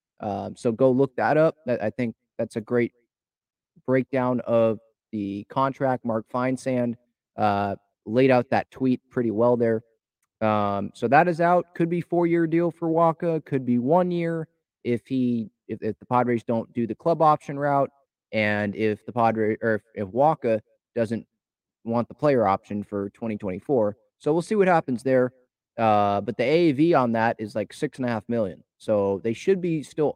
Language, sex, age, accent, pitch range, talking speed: English, male, 30-49, American, 115-160 Hz, 185 wpm